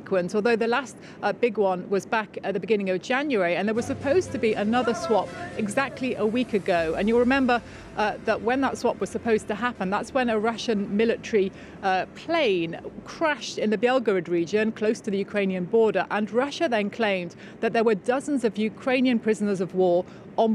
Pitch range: 195-230 Hz